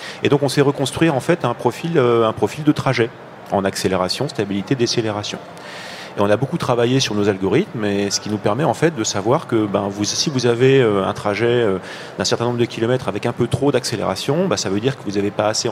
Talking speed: 235 wpm